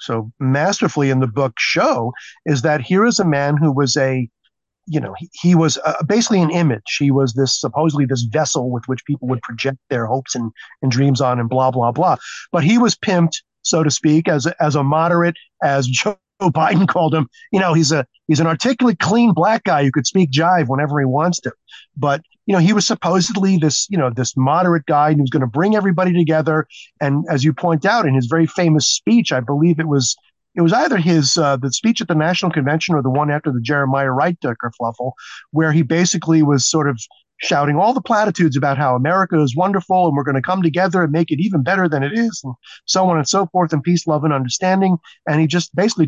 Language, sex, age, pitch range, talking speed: English, male, 40-59, 140-180 Hz, 230 wpm